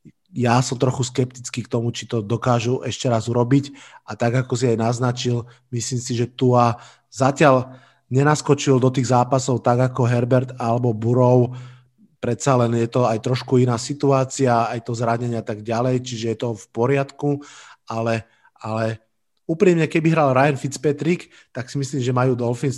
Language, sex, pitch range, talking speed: Slovak, male, 115-130 Hz, 170 wpm